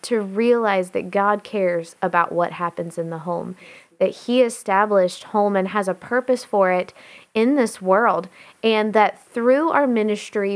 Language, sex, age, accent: English, female, 20-39, American